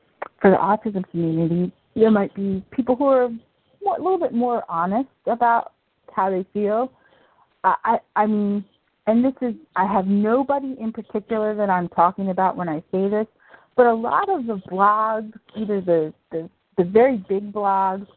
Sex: female